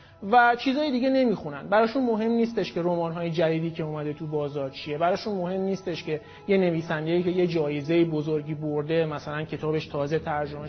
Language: English